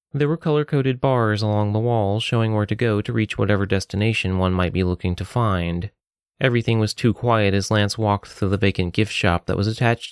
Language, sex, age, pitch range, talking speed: English, male, 30-49, 100-120 Hz, 215 wpm